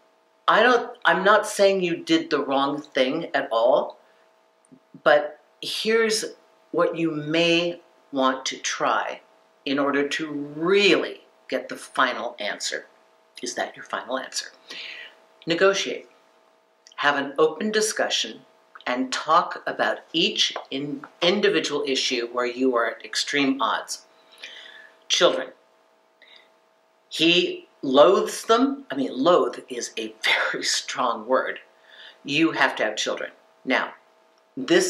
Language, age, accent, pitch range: English, 50-69, American, 130-190 Hz